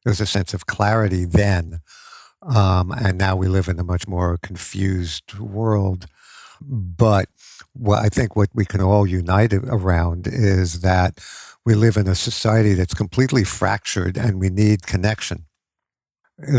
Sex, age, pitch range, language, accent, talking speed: male, 60-79, 95-115 Hz, English, American, 155 wpm